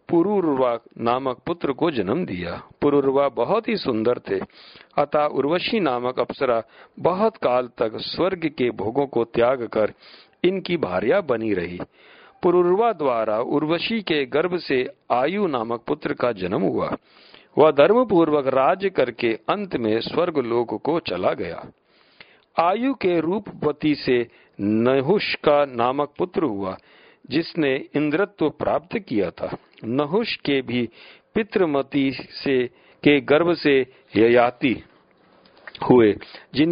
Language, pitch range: Hindi, 130-175 Hz